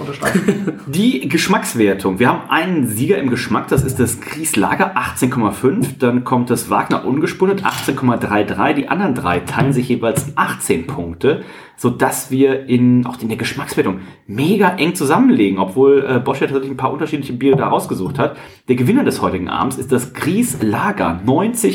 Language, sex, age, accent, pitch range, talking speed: German, male, 40-59, German, 120-155 Hz, 155 wpm